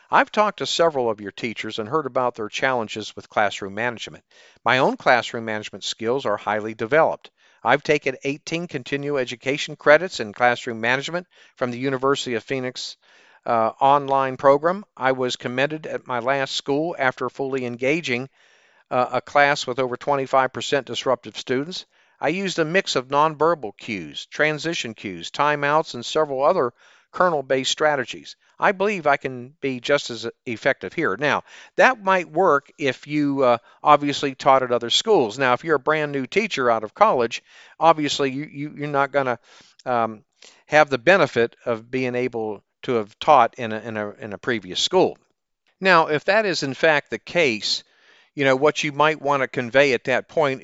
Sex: male